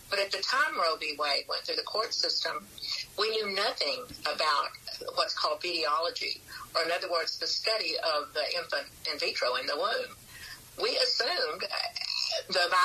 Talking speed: 170 wpm